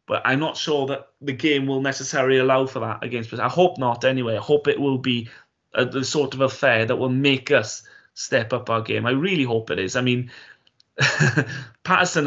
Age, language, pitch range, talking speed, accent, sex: 20-39, English, 120-135 Hz, 205 wpm, British, male